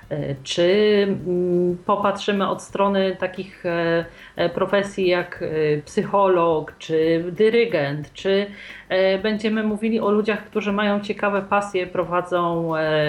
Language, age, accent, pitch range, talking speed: Polish, 40-59, native, 175-205 Hz, 90 wpm